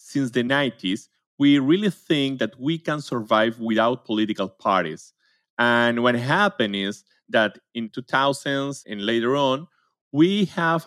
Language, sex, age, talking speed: English, male, 30-49, 140 wpm